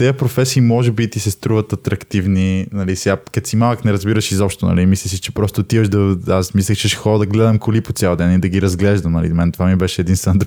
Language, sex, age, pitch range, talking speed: Bulgarian, male, 20-39, 100-120 Hz, 235 wpm